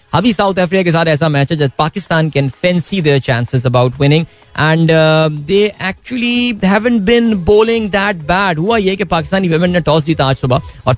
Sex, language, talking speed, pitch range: male, Hindi, 105 wpm, 130-165 Hz